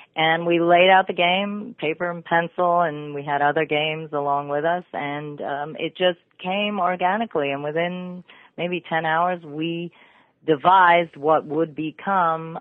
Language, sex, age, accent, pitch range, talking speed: English, female, 40-59, American, 140-165 Hz, 155 wpm